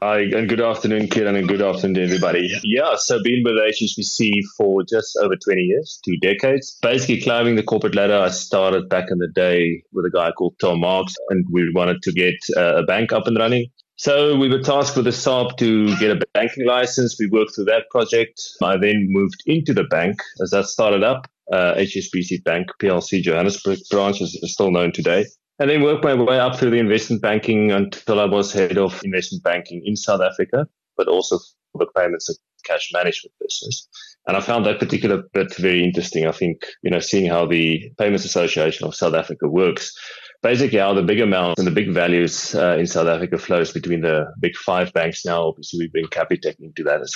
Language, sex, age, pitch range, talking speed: English, male, 20-39, 90-135 Hz, 210 wpm